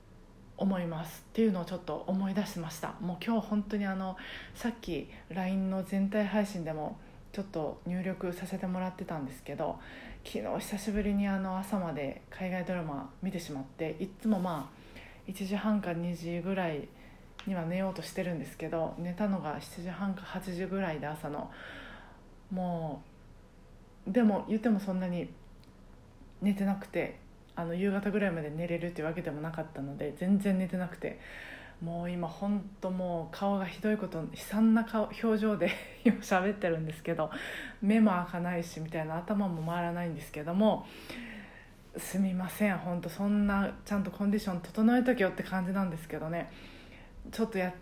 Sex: female